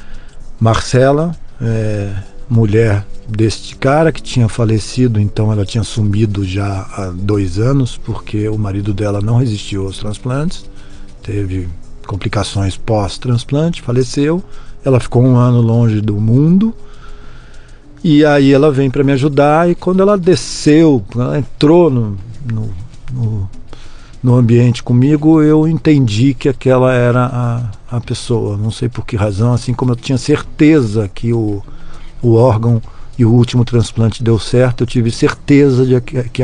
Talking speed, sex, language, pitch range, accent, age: 140 wpm, male, Portuguese, 110-140 Hz, Brazilian, 50-69